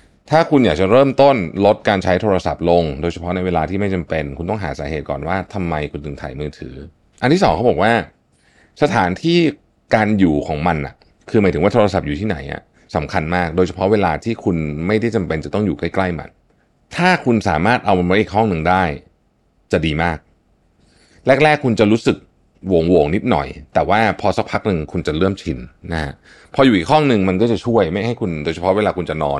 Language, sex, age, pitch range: Thai, male, 30-49, 75-105 Hz